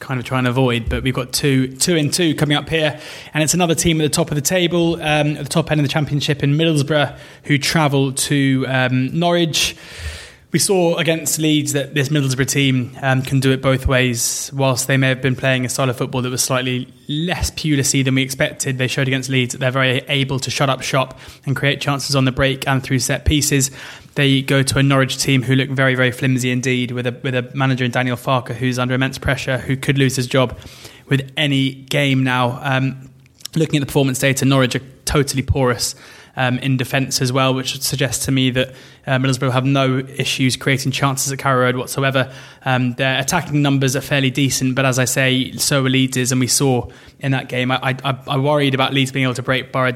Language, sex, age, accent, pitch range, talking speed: English, male, 20-39, British, 130-140 Hz, 230 wpm